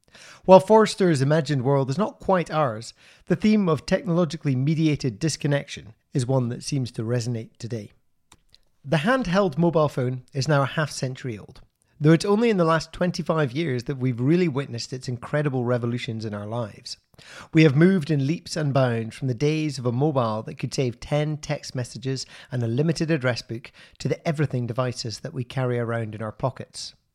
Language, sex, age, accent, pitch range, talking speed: English, male, 40-59, British, 125-160 Hz, 185 wpm